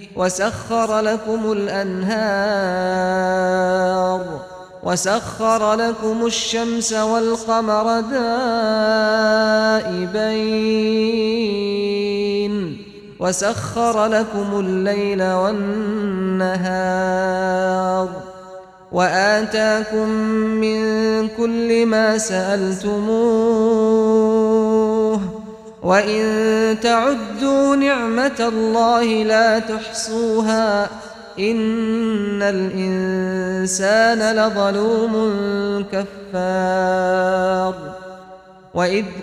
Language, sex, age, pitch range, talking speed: Arabic, male, 30-49, 185-220 Hz, 45 wpm